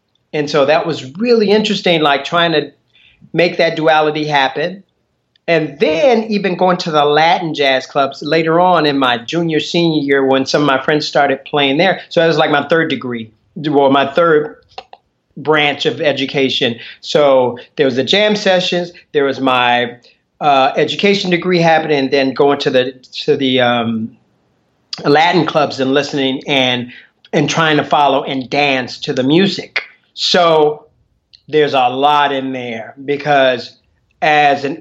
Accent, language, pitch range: American, English, 130-160 Hz